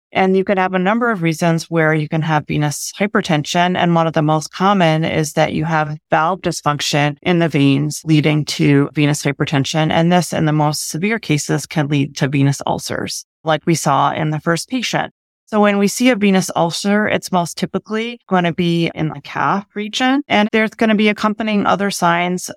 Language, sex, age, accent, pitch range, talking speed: English, female, 30-49, American, 150-185 Hz, 205 wpm